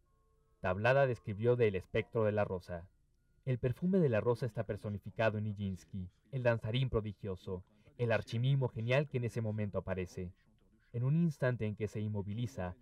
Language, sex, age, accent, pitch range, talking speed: Spanish, male, 40-59, Mexican, 100-125 Hz, 165 wpm